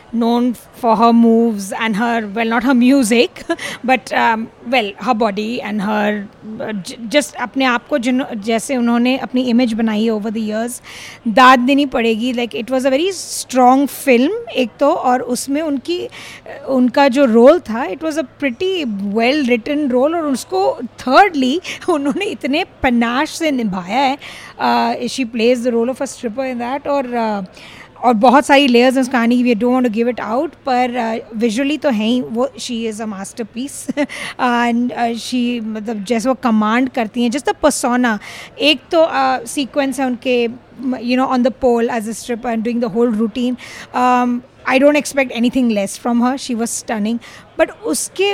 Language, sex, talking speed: Hindi, female, 170 wpm